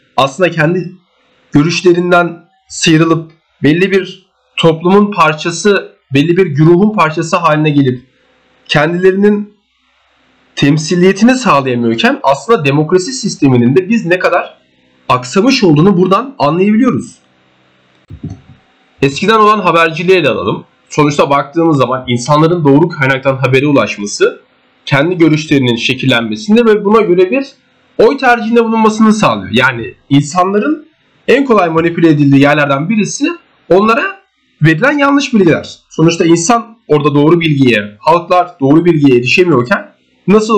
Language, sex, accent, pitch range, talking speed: Turkish, male, native, 145-215 Hz, 110 wpm